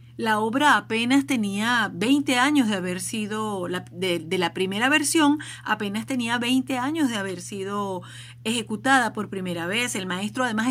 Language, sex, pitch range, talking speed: Spanish, female, 175-255 Hz, 155 wpm